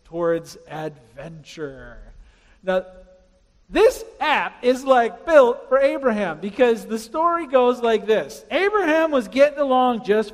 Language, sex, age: English, male, 40-59